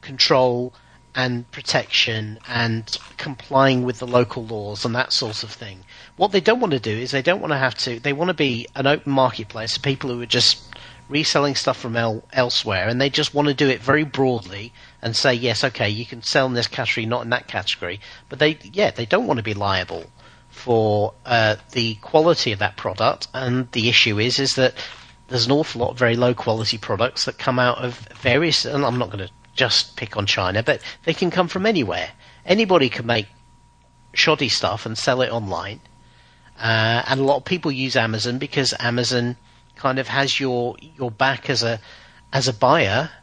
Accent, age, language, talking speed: British, 40-59, English, 205 wpm